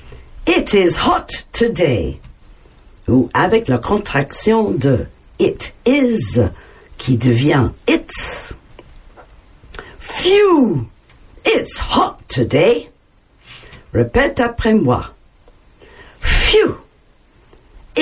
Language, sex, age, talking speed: French, female, 60-79, 75 wpm